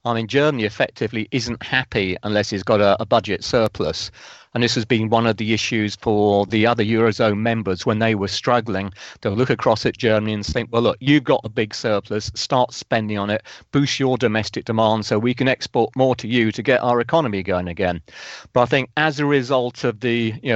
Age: 40-59